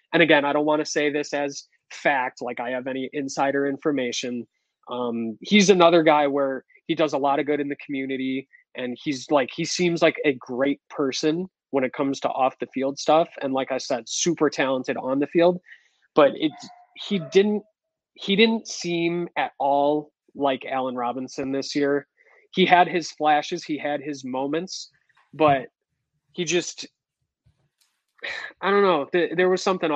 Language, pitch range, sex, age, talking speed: English, 135-170 Hz, male, 20-39, 175 wpm